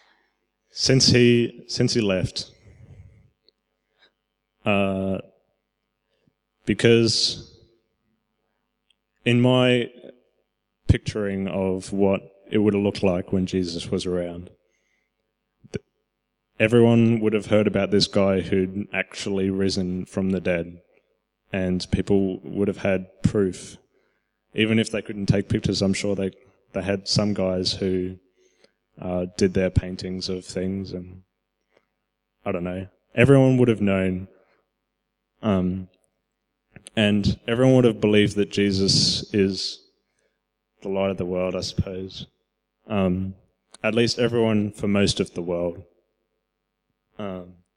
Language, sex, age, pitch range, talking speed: English, male, 20-39, 95-105 Hz, 120 wpm